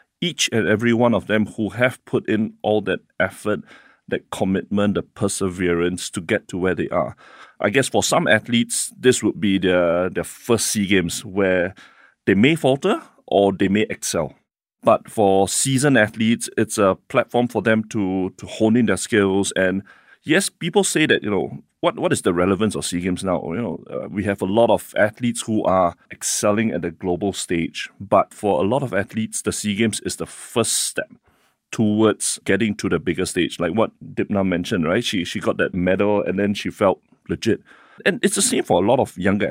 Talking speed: 200 wpm